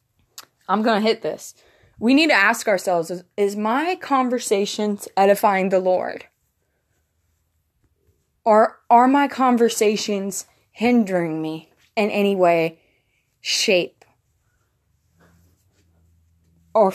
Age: 20-39